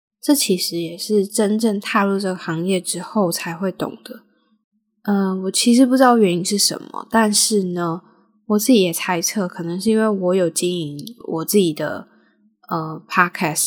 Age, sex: 10-29, female